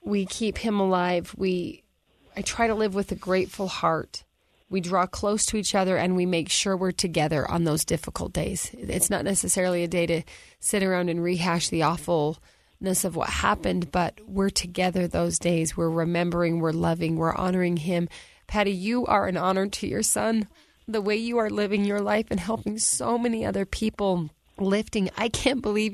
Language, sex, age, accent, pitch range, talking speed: English, female, 30-49, American, 175-205 Hz, 185 wpm